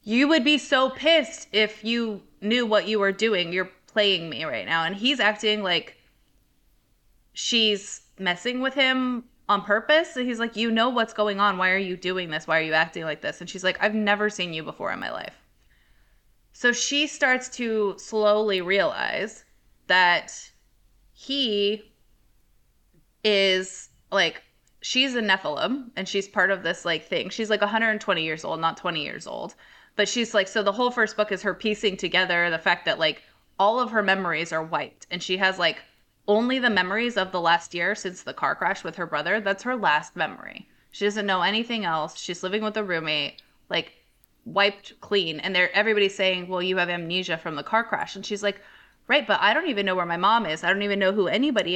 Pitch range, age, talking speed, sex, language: 180-225 Hz, 20-39, 200 wpm, female, English